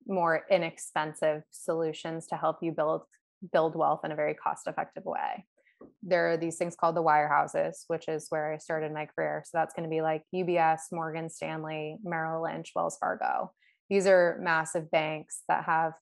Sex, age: female, 20-39